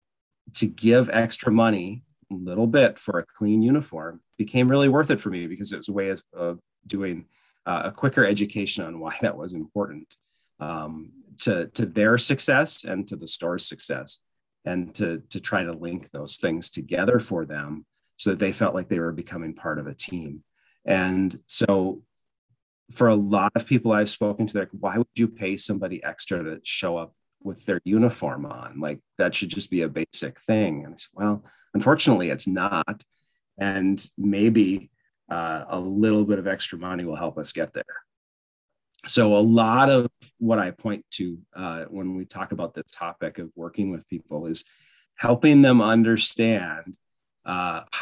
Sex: male